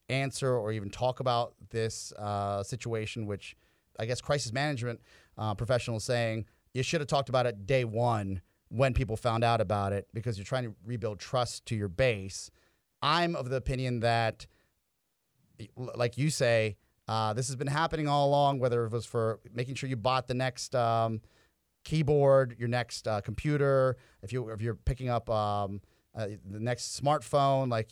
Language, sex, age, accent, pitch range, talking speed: English, male, 30-49, American, 105-130 Hz, 175 wpm